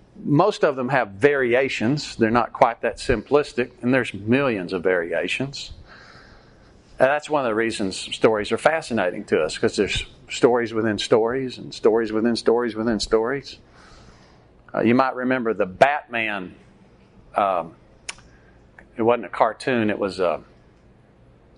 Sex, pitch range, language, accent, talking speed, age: male, 105-135 Hz, English, American, 140 wpm, 50-69